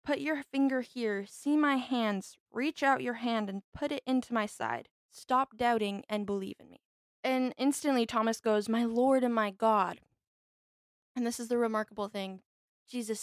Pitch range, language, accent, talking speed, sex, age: 210-255 Hz, English, American, 175 wpm, female, 10-29